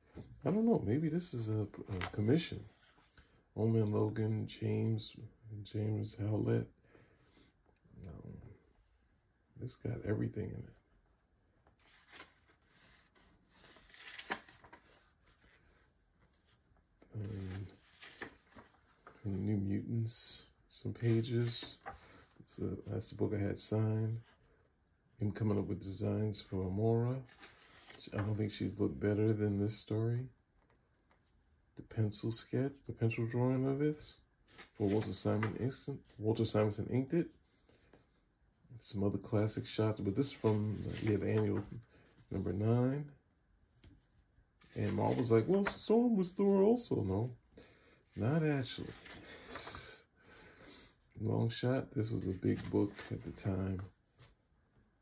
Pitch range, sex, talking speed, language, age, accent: 105-120 Hz, male, 110 wpm, English, 40-59, American